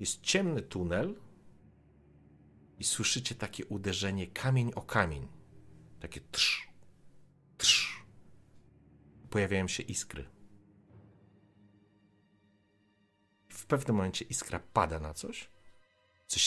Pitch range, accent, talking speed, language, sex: 80-115 Hz, native, 85 wpm, Polish, male